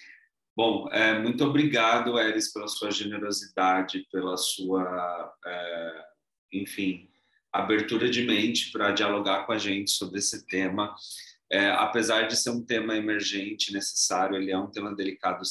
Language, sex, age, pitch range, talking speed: Portuguese, male, 30-49, 95-110 Hz, 140 wpm